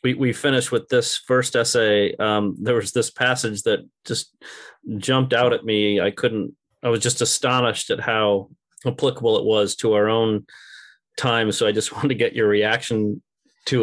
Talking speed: 180 wpm